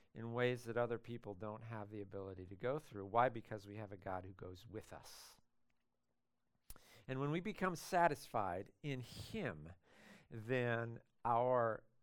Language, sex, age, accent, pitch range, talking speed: English, male, 50-69, American, 110-135 Hz, 155 wpm